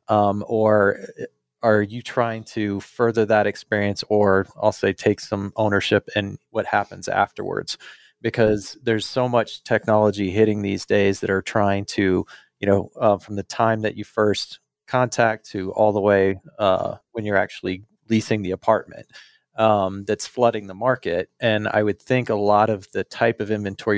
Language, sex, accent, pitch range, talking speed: English, male, American, 95-110 Hz, 170 wpm